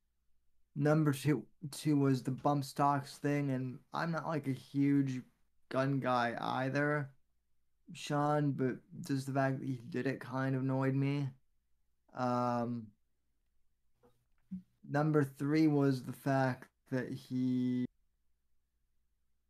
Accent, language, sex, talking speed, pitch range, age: American, English, male, 115 wpm, 115-140 Hz, 20-39